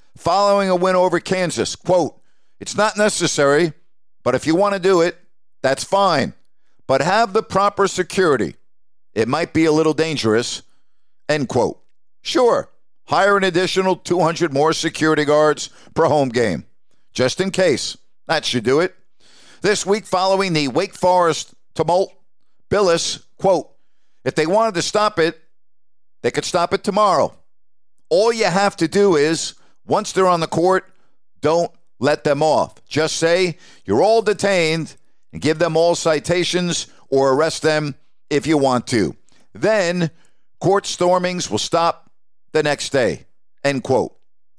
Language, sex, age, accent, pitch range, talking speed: English, male, 50-69, American, 155-190 Hz, 150 wpm